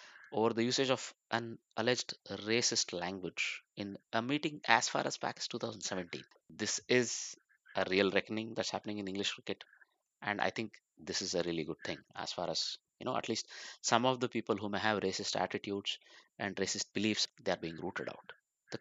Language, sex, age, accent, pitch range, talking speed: English, male, 20-39, Indian, 100-115 Hz, 195 wpm